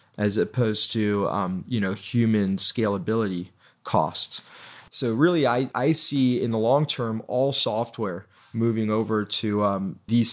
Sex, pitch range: male, 110-125 Hz